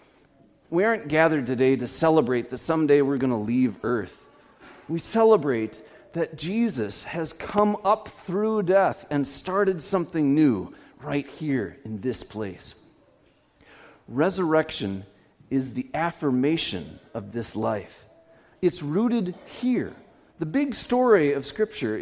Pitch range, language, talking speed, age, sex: 135-200 Hz, English, 125 wpm, 40-59, male